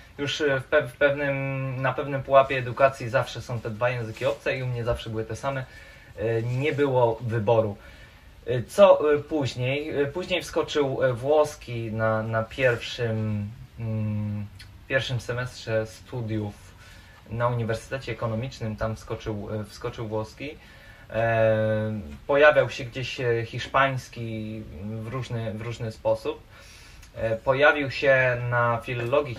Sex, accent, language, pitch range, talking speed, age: male, native, Polish, 110-135 Hz, 105 wpm, 20-39